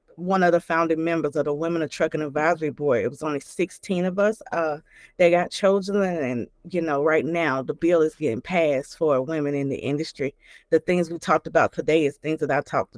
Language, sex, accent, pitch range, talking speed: English, female, American, 170-240 Hz, 220 wpm